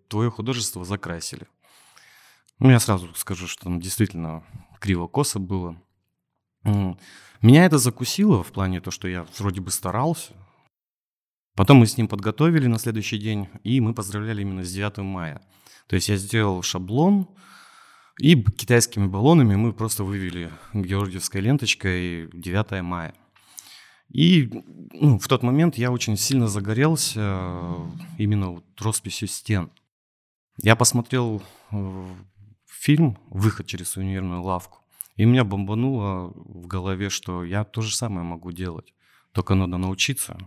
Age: 30-49